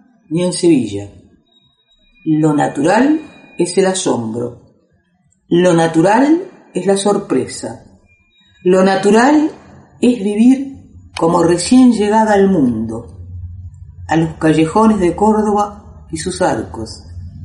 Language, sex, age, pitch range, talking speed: Spanish, female, 40-59, 150-205 Hz, 105 wpm